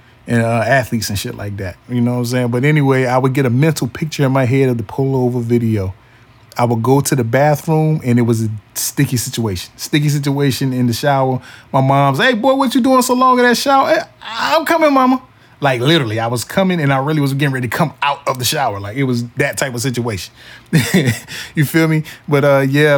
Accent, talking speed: American, 235 wpm